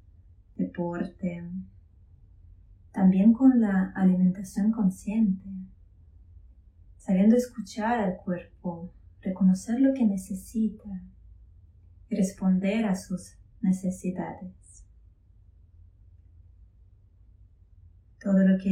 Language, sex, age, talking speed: Spanish, female, 20-39, 70 wpm